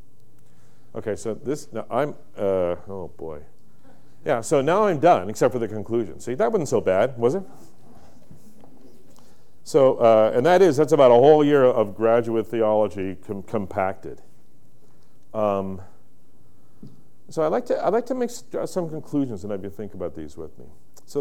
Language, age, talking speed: English, 40-59, 160 wpm